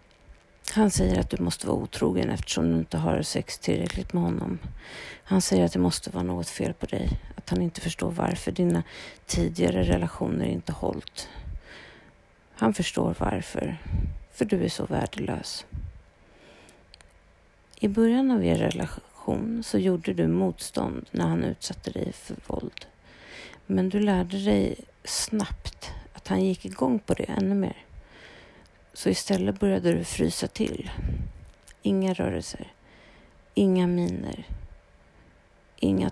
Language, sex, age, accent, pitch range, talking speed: Swedish, female, 40-59, native, 85-120 Hz, 140 wpm